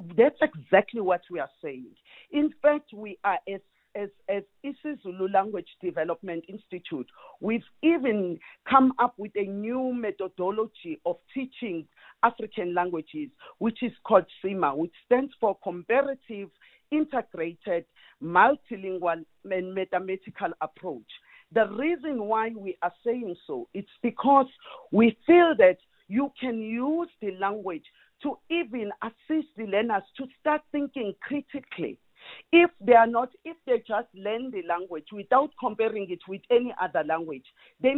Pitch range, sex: 190-270 Hz, female